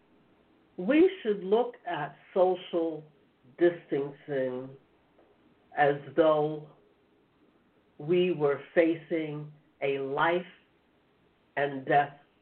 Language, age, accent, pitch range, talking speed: English, 60-79, American, 150-200 Hz, 65 wpm